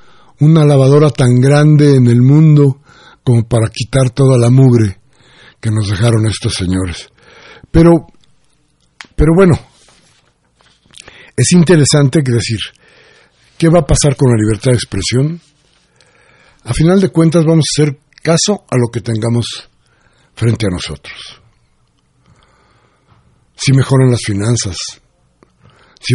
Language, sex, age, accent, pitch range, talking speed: Spanish, male, 60-79, Mexican, 115-150 Hz, 125 wpm